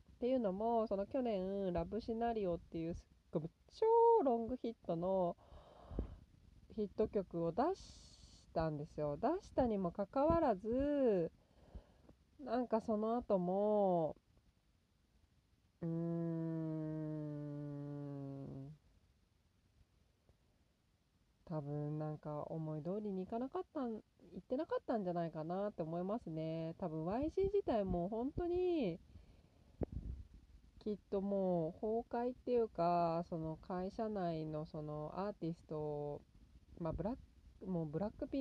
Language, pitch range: Japanese, 145-215 Hz